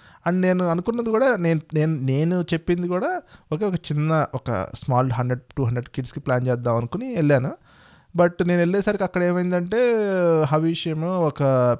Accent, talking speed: Indian, 85 wpm